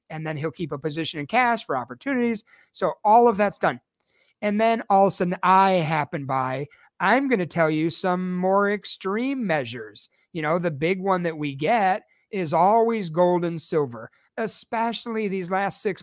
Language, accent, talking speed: English, American, 185 wpm